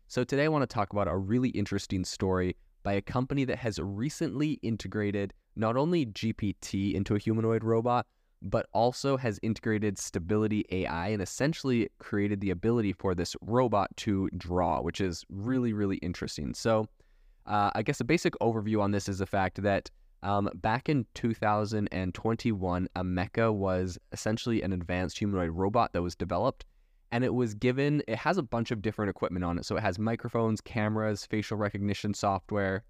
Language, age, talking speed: English, 20-39, 175 wpm